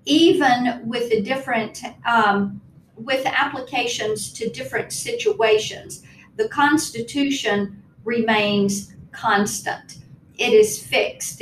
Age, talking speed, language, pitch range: 50-69, 90 wpm, English, 215-260 Hz